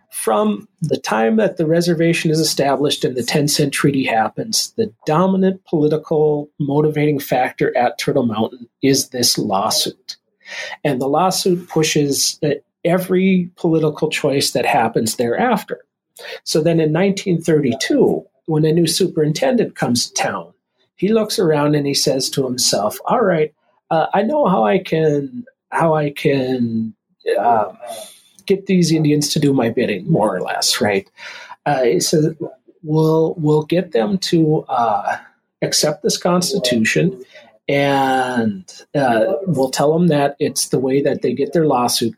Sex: male